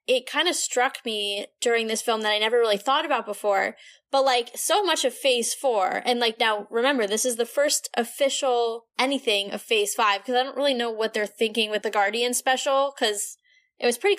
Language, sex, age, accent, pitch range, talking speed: English, female, 10-29, American, 220-280 Hz, 215 wpm